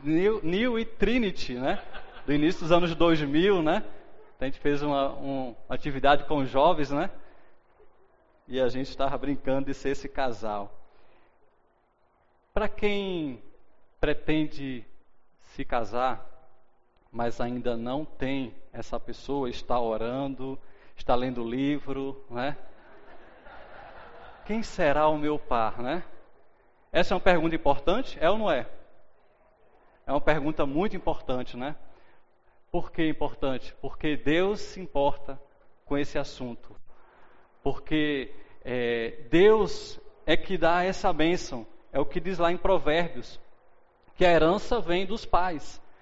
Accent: Brazilian